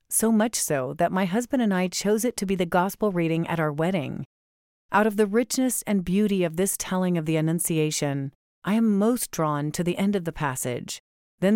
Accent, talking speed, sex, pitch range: American, 215 wpm, female, 160-205 Hz